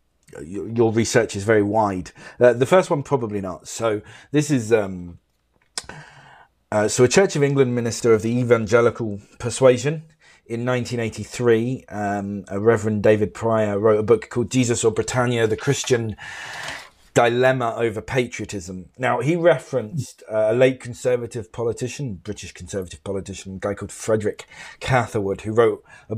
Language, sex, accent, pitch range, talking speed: English, male, British, 100-125 Hz, 145 wpm